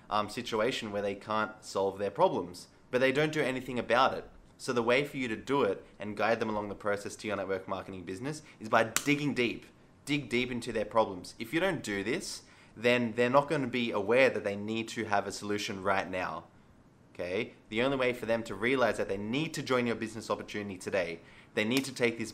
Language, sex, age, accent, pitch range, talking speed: English, male, 20-39, Australian, 105-125 Hz, 230 wpm